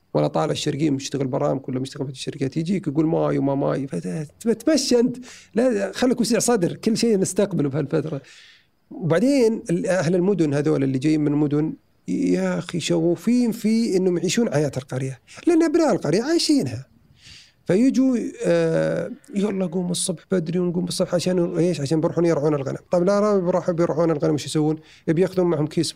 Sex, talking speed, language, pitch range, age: male, 155 wpm, Arabic, 145-190 Hz, 40-59